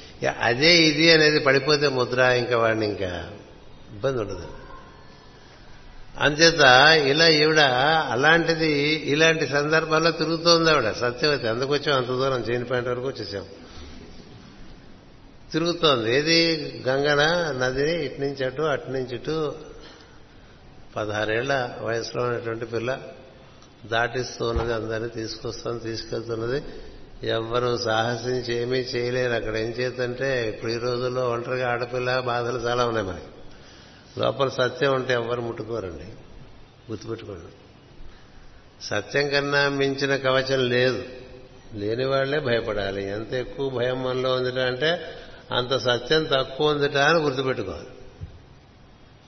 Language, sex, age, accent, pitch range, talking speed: Telugu, male, 60-79, native, 115-140 Hz, 105 wpm